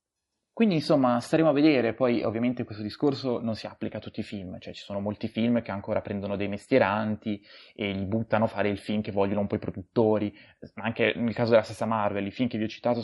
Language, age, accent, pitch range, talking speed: Italian, 20-39, native, 105-125 Hz, 235 wpm